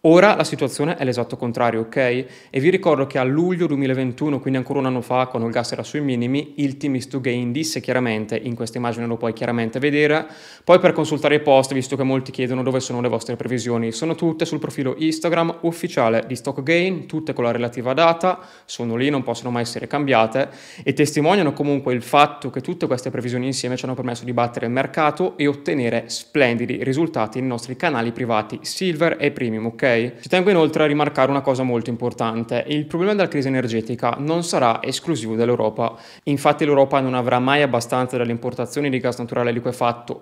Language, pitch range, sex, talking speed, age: Italian, 120-145 Hz, male, 195 wpm, 20-39